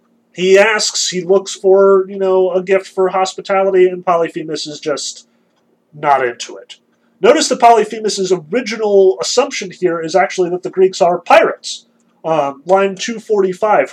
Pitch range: 170-215 Hz